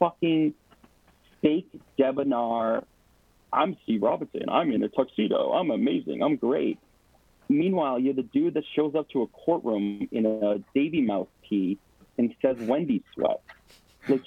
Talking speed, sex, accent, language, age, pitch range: 145 wpm, male, American, English, 40-59, 105-170 Hz